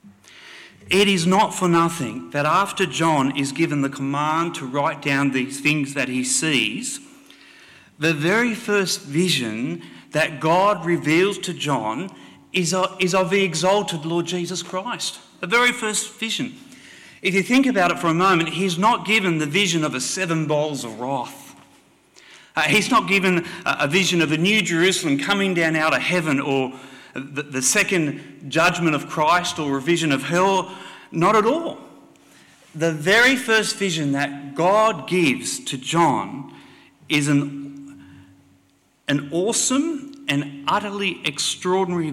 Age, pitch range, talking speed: 40-59, 140-190 Hz, 145 wpm